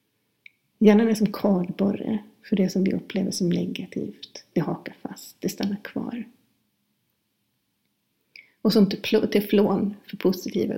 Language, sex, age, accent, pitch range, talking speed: Swedish, female, 30-49, native, 195-220 Hz, 120 wpm